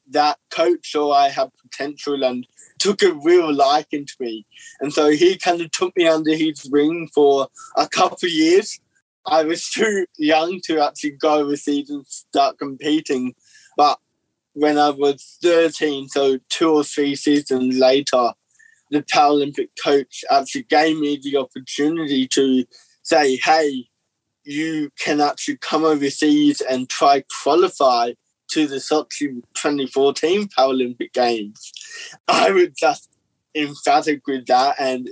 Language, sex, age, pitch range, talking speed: English, male, 20-39, 140-175 Hz, 140 wpm